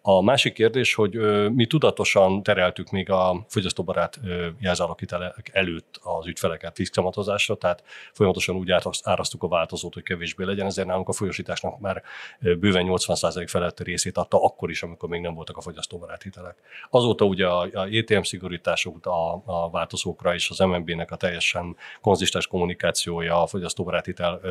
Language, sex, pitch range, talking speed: Hungarian, male, 85-95 Hz, 140 wpm